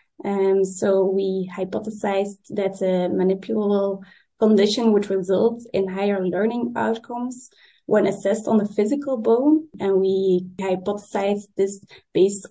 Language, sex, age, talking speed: English, female, 20-39, 120 wpm